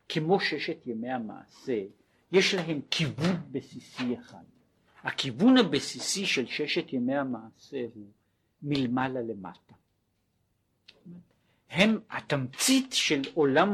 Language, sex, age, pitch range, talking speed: Hebrew, male, 50-69, 125-190 Hz, 90 wpm